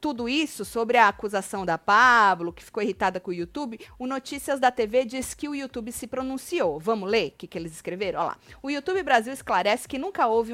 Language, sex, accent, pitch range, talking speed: Portuguese, female, Brazilian, 200-260 Hz, 220 wpm